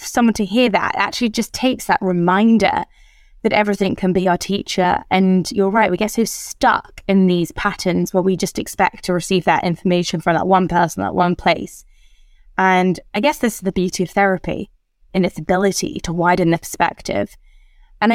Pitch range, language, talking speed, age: 175-200 Hz, English, 190 wpm, 20-39